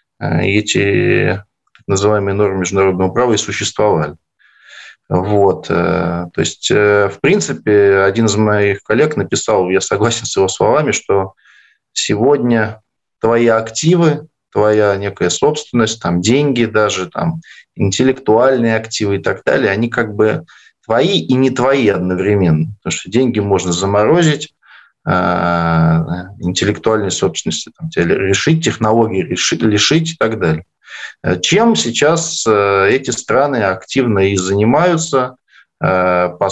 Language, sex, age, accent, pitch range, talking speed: Russian, male, 20-39, native, 90-115 Hz, 105 wpm